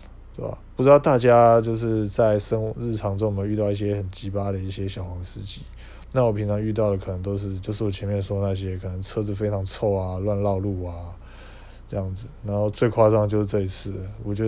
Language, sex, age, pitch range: Chinese, male, 20-39, 95-110 Hz